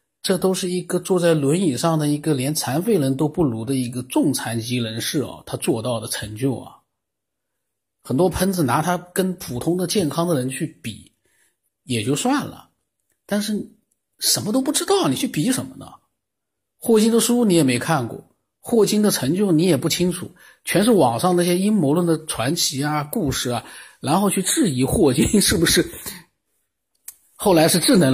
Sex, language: male, Chinese